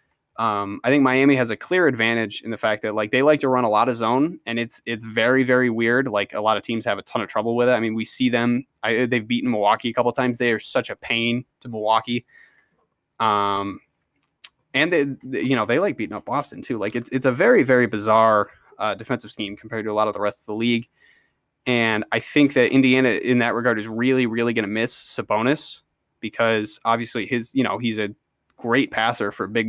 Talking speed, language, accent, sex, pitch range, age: 235 wpm, English, American, male, 110-125 Hz, 20-39